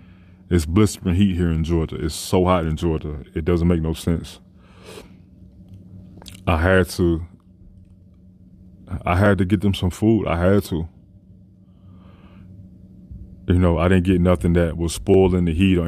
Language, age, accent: English, 20-39, American